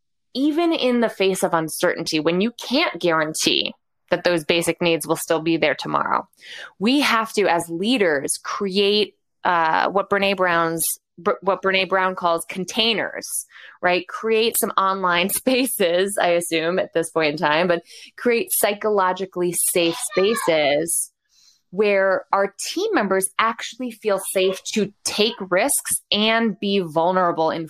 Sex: female